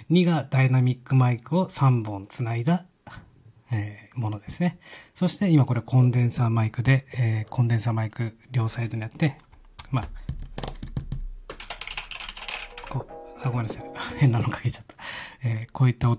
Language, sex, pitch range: Japanese, male, 120-150 Hz